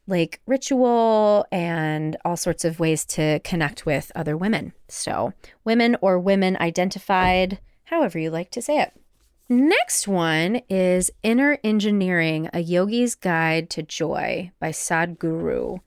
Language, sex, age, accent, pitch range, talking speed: English, female, 30-49, American, 160-225 Hz, 130 wpm